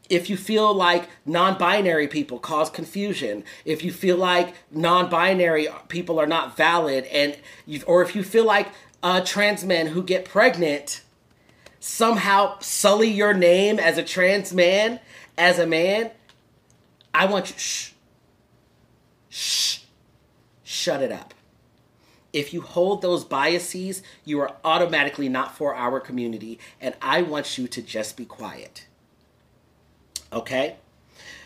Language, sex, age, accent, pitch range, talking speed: English, male, 40-59, American, 145-180 Hz, 130 wpm